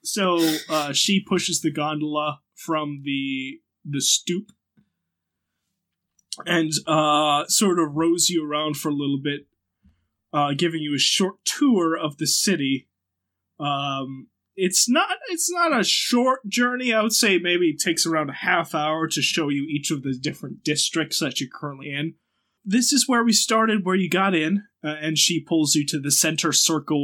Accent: American